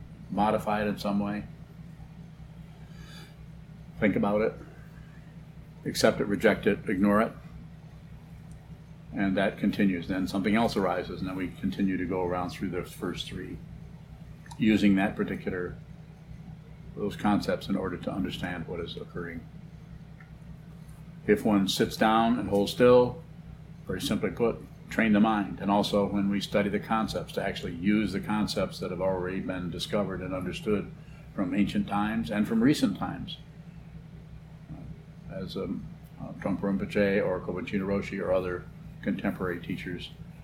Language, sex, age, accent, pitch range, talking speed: English, male, 50-69, American, 100-160 Hz, 140 wpm